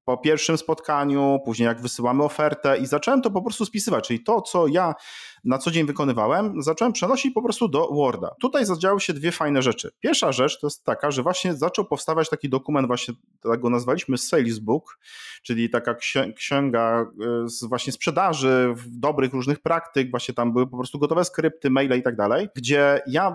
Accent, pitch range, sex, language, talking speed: native, 120-160 Hz, male, Polish, 185 wpm